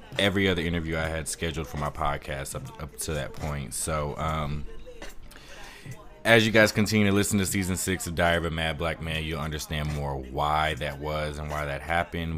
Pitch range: 75-90 Hz